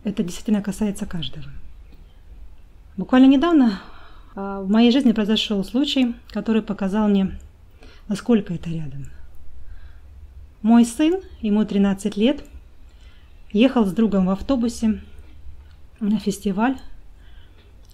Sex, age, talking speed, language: female, 20-39, 95 wpm, Russian